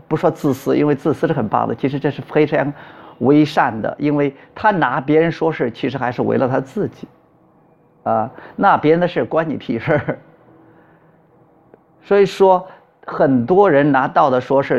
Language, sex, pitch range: Chinese, male, 135-175 Hz